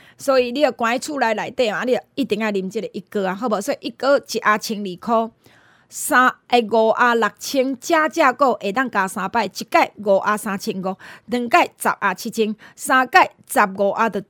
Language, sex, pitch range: Chinese, female, 210-295 Hz